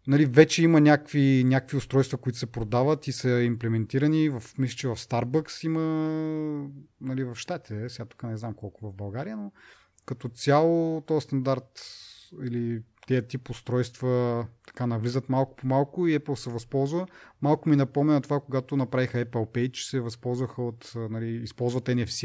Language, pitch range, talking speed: Bulgarian, 115-140 Hz, 160 wpm